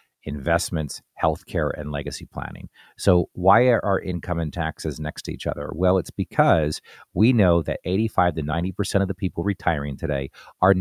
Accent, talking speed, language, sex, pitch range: American, 170 wpm, English, male, 85-110 Hz